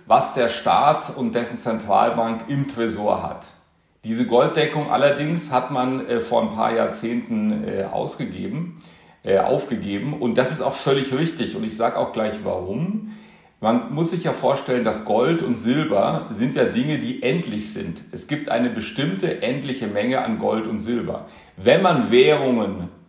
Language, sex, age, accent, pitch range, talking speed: German, male, 40-59, German, 110-165 Hz, 165 wpm